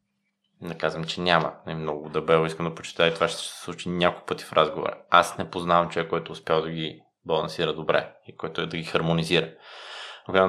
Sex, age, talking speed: male, 20-39, 210 wpm